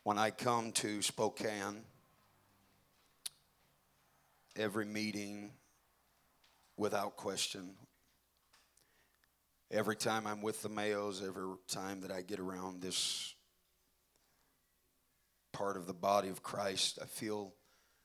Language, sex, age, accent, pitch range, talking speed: English, male, 40-59, American, 95-110 Hz, 100 wpm